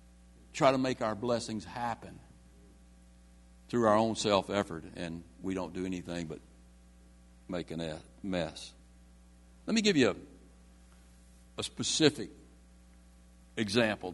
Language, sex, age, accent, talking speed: English, male, 60-79, American, 115 wpm